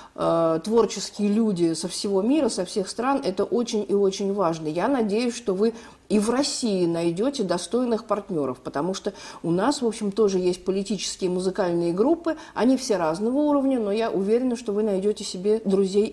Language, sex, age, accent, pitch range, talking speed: Russian, female, 40-59, native, 175-220 Hz, 170 wpm